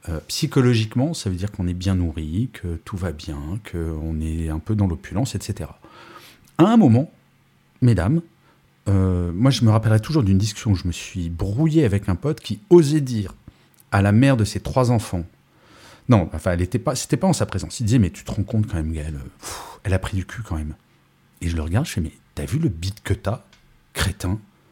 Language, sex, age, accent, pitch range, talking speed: French, male, 40-59, French, 90-130 Hz, 220 wpm